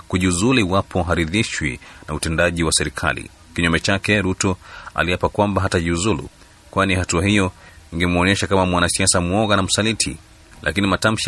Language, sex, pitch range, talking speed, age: Swahili, male, 85-100 Hz, 135 wpm, 30-49